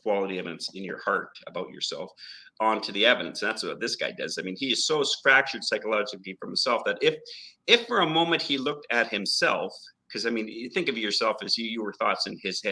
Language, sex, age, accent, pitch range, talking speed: English, male, 40-59, American, 95-135 Hz, 220 wpm